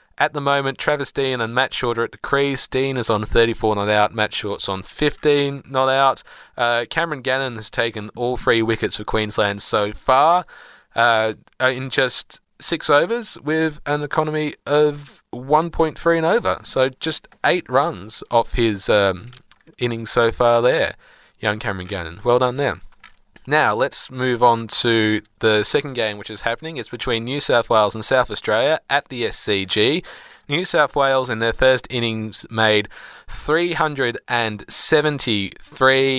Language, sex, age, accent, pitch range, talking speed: English, male, 20-39, Australian, 110-140 Hz, 160 wpm